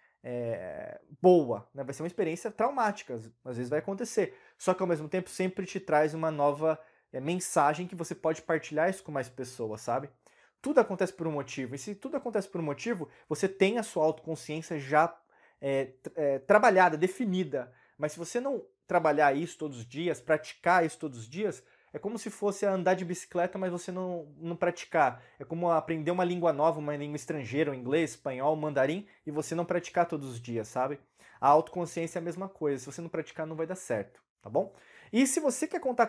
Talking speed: 200 wpm